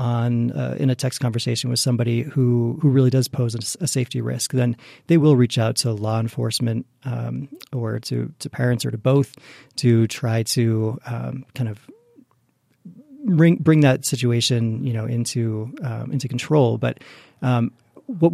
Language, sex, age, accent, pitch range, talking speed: English, male, 40-59, American, 120-140 Hz, 165 wpm